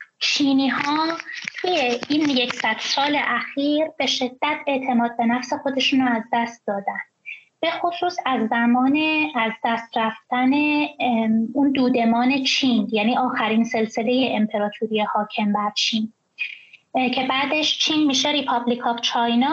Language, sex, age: Persian, female, 20-39